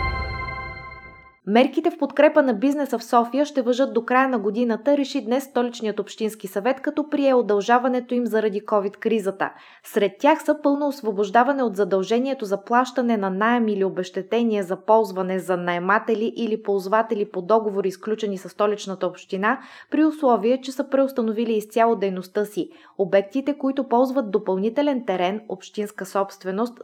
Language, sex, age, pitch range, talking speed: Bulgarian, female, 20-39, 195-255 Hz, 145 wpm